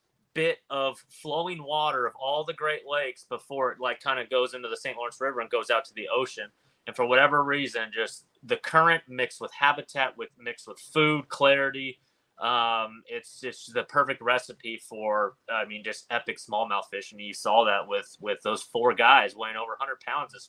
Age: 30-49